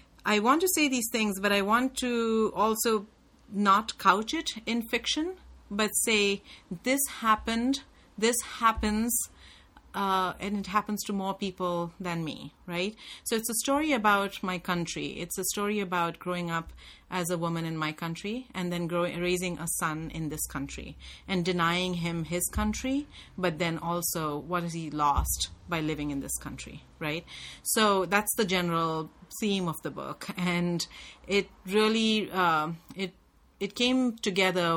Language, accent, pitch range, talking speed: English, Indian, 170-230 Hz, 160 wpm